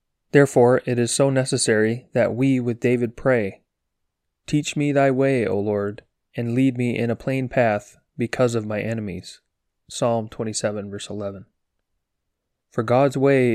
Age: 30-49